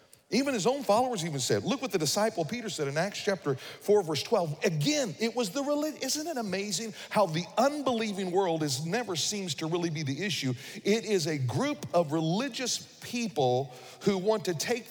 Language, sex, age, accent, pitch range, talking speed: English, male, 40-59, American, 155-220 Hz, 195 wpm